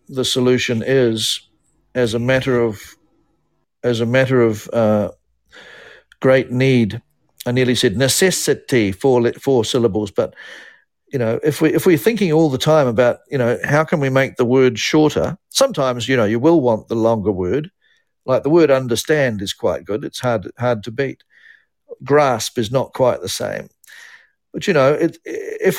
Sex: male